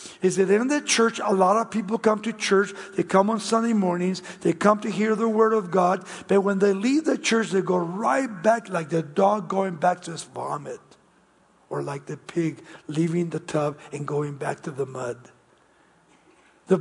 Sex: male